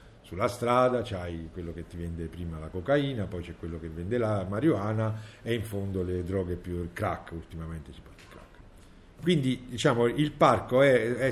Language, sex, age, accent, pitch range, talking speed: Italian, male, 50-69, native, 90-110 Hz, 190 wpm